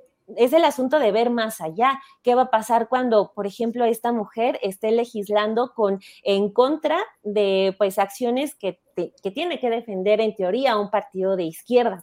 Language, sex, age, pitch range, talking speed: Spanish, female, 20-39, 205-250 Hz, 175 wpm